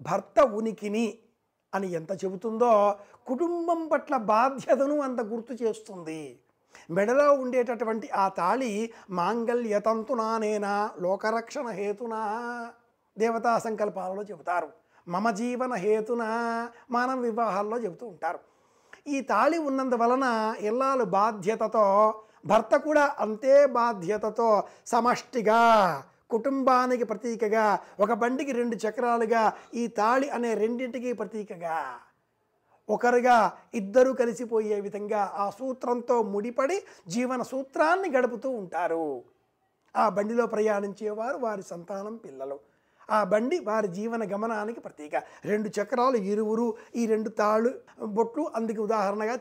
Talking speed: 100 wpm